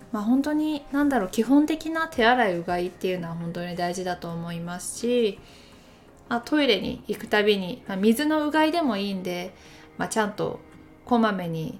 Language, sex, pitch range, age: Japanese, female, 190-245 Hz, 20-39